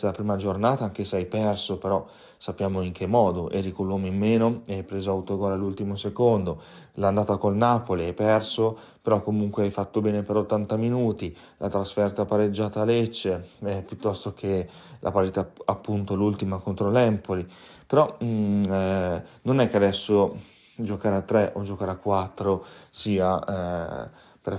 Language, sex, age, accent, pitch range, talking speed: Italian, male, 30-49, native, 95-110 Hz, 160 wpm